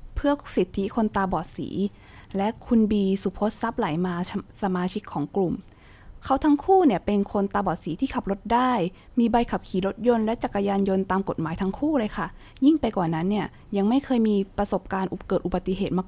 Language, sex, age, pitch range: Thai, female, 20-39, 185-235 Hz